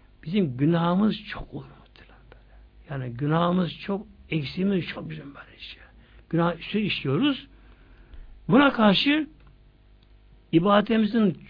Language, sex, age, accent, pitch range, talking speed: Turkish, male, 60-79, native, 140-200 Hz, 100 wpm